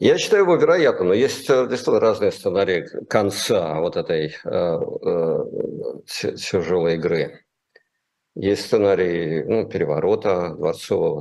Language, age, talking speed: Russian, 50-69, 105 wpm